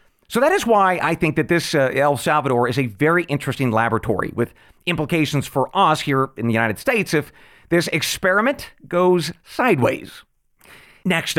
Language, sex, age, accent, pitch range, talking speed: English, male, 40-59, American, 130-175 Hz, 165 wpm